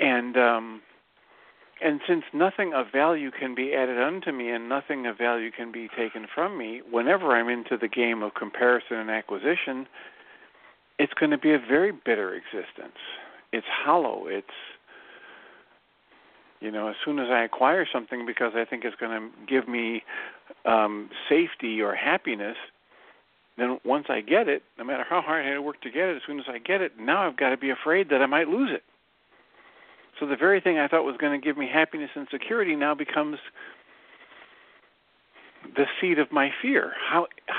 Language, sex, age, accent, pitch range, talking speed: English, male, 50-69, American, 115-155 Hz, 185 wpm